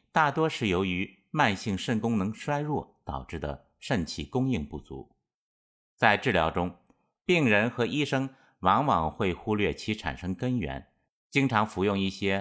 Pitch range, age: 75-115 Hz, 50-69